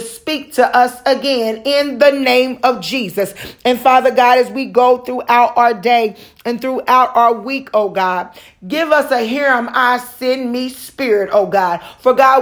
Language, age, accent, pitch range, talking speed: English, 40-59, American, 240-275 Hz, 180 wpm